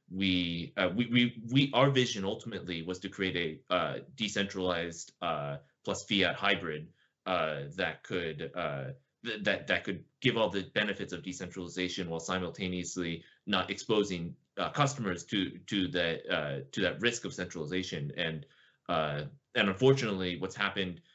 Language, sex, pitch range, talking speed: English, male, 90-105 Hz, 150 wpm